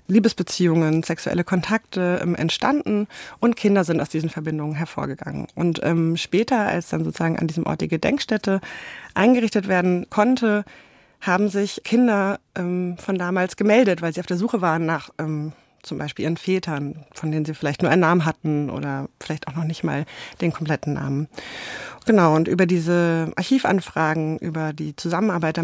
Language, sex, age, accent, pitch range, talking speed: German, female, 30-49, German, 155-185 Hz, 165 wpm